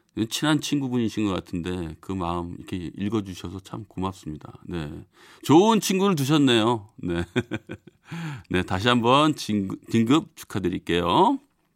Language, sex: Korean, male